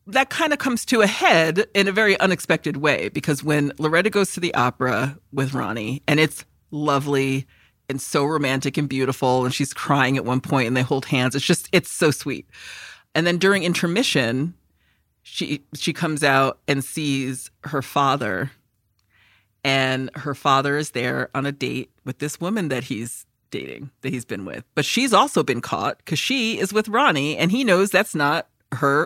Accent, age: American, 40-59